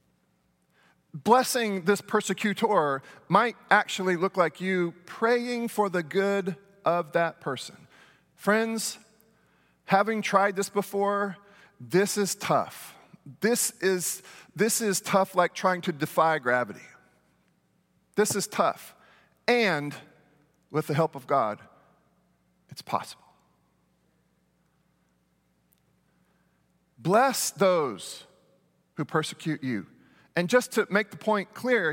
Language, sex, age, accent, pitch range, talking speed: English, male, 40-59, American, 155-230 Hz, 105 wpm